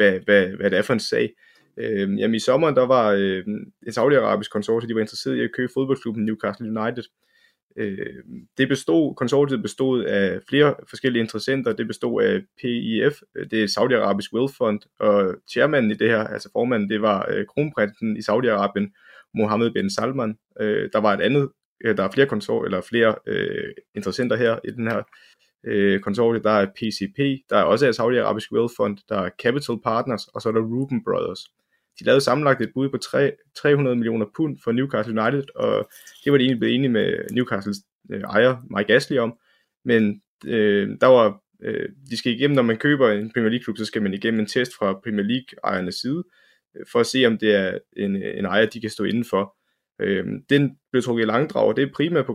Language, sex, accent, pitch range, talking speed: Danish, male, native, 105-130 Hz, 195 wpm